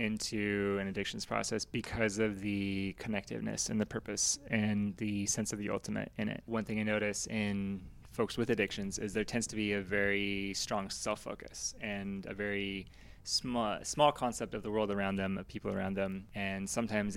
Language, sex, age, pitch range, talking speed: English, male, 20-39, 100-110 Hz, 185 wpm